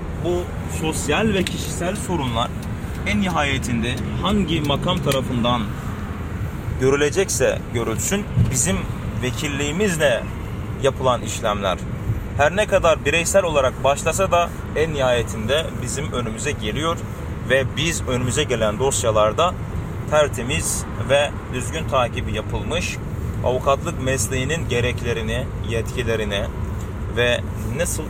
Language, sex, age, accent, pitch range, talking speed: Turkish, male, 30-49, native, 100-135 Hz, 95 wpm